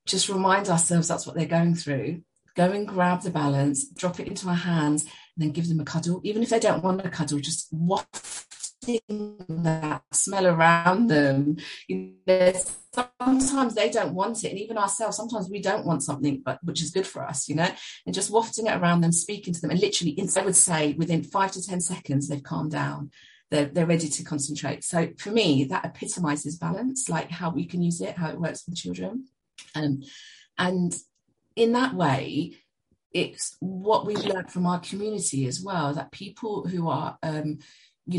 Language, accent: English, British